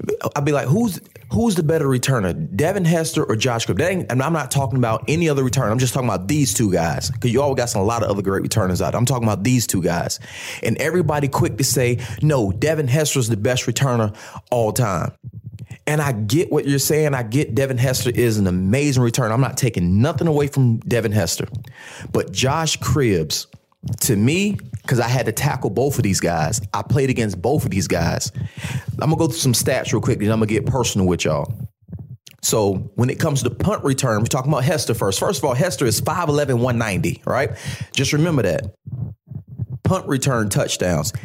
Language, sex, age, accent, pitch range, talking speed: English, male, 30-49, American, 110-140 Hz, 210 wpm